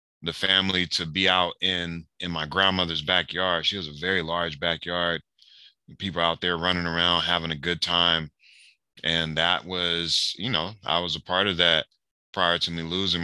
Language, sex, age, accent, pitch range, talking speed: English, male, 20-39, American, 80-90 Hz, 180 wpm